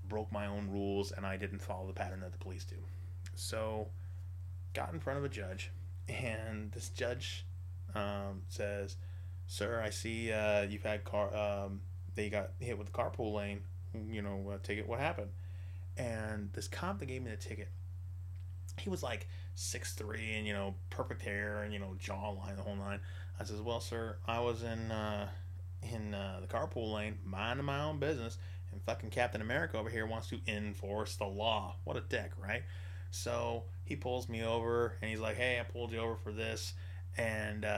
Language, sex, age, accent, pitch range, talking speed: English, male, 20-39, American, 90-110 Hz, 190 wpm